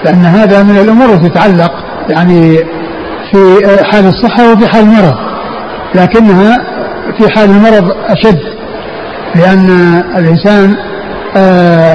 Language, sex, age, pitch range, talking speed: Arabic, male, 60-79, 185-210 Hz, 100 wpm